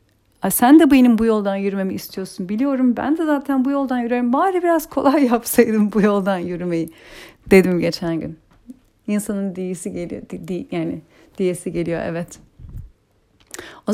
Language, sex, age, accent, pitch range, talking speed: Turkish, female, 40-59, native, 180-255 Hz, 145 wpm